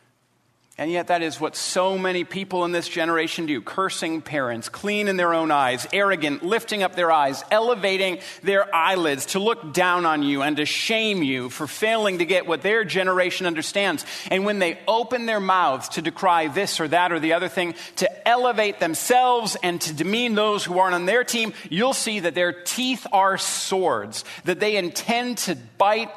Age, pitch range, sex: 40-59, 155-195 Hz, male